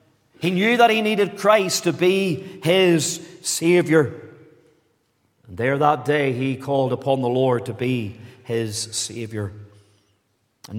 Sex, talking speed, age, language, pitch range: male, 135 wpm, 40-59, English, 120-150 Hz